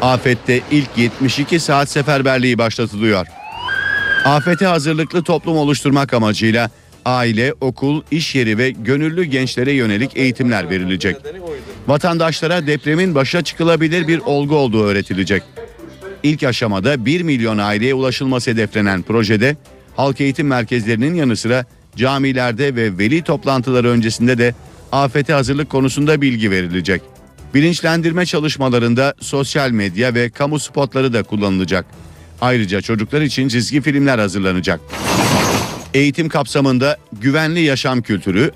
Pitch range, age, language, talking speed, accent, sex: 115-150 Hz, 50-69, Turkish, 115 wpm, native, male